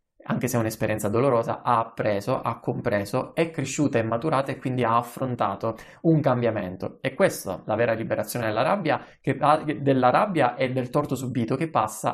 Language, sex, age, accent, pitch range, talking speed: Italian, male, 20-39, native, 115-150 Hz, 175 wpm